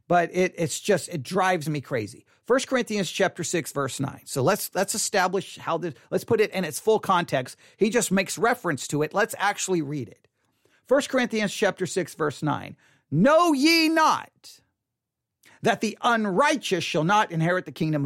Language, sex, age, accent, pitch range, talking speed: English, male, 40-59, American, 180-280 Hz, 180 wpm